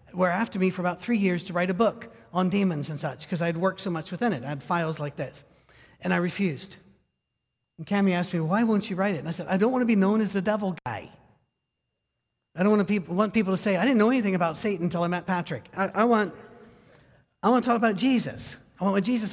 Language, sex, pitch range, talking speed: English, male, 130-190 Hz, 260 wpm